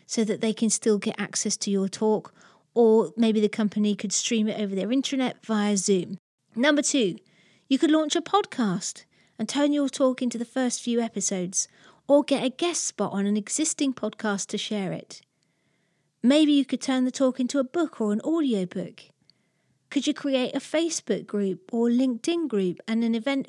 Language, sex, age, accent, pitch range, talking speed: English, female, 40-59, British, 215-285 Hz, 190 wpm